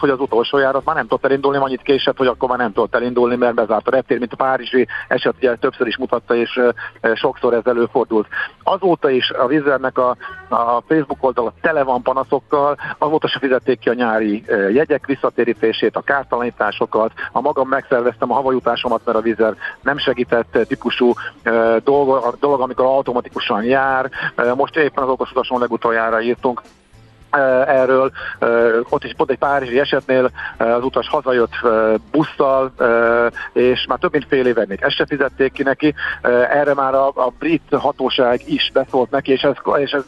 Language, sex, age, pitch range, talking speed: Hungarian, male, 50-69, 120-140 Hz, 175 wpm